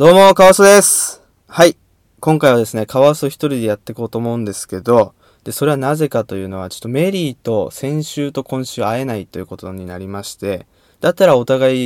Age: 20-39